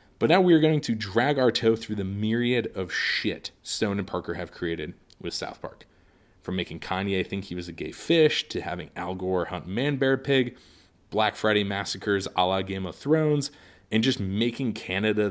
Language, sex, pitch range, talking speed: English, male, 95-125 Hz, 190 wpm